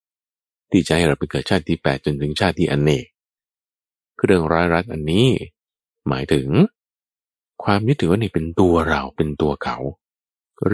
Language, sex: Thai, male